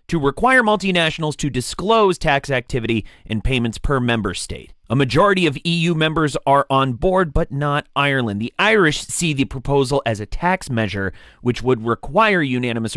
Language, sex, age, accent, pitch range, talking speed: English, male, 30-49, American, 115-160 Hz, 165 wpm